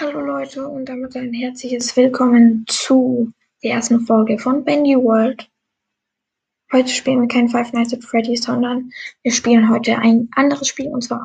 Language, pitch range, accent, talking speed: German, 235-260 Hz, German, 165 wpm